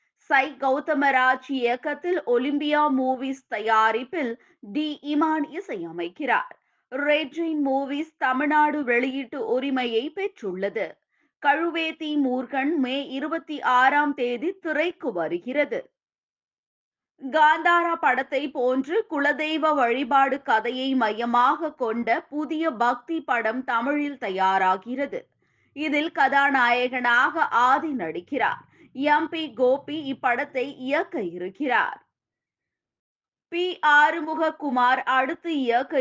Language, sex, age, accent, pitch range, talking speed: Tamil, female, 20-39, native, 250-310 Hz, 85 wpm